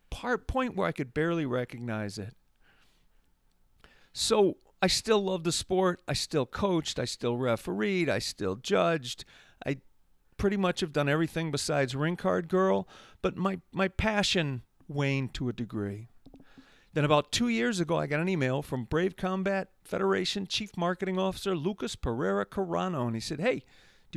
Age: 50-69